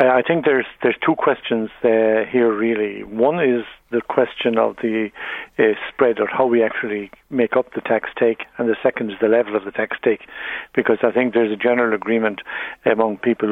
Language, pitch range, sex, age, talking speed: English, 110-120 Hz, male, 50-69, 200 wpm